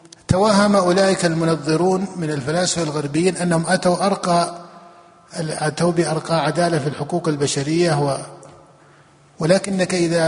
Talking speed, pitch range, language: 105 wpm, 155-180 Hz, Arabic